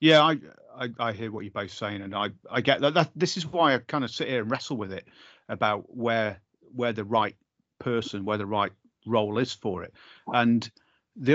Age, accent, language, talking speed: 30-49, British, English, 220 wpm